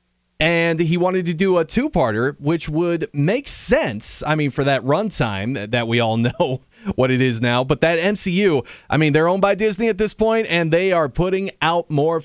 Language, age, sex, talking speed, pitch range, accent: English, 30-49, male, 205 wpm, 130-175 Hz, American